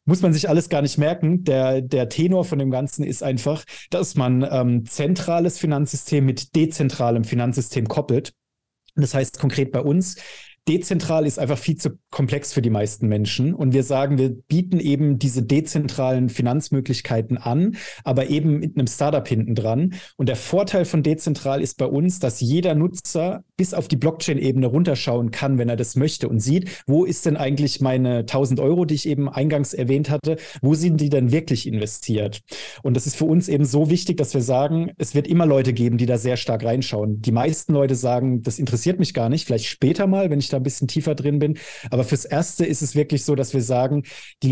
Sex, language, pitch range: male, German, 125-155 Hz